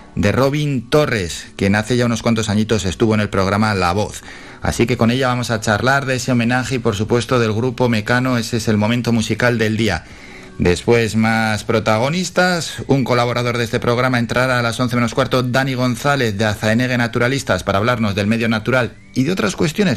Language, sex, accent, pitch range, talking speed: Spanish, male, Spanish, 105-130 Hz, 200 wpm